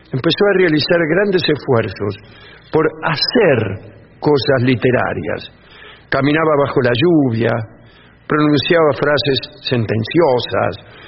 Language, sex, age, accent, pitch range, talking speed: English, male, 50-69, Argentinian, 130-195 Hz, 85 wpm